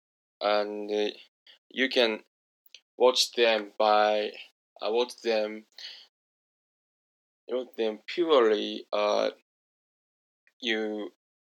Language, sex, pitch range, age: Japanese, male, 105-125 Hz, 10-29